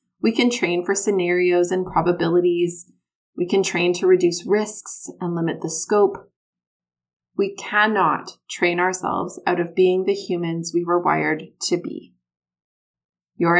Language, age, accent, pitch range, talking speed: English, 30-49, American, 175-235 Hz, 140 wpm